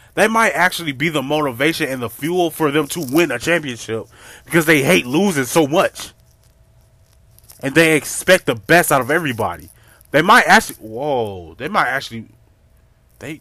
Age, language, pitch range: 20-39, English, 110-145 Hz